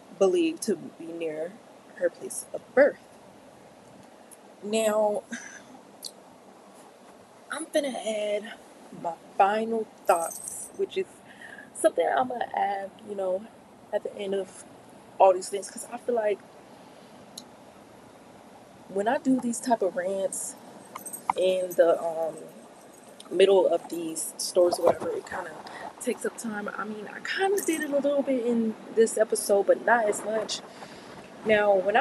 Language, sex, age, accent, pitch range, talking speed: English, female, 20-39, American, 185-255 Hz, 140 wpm